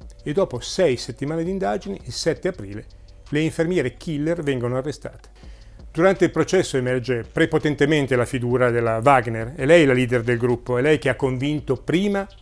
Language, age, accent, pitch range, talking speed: Italian, 40-59, native, 115-155 Hz, 170 wpm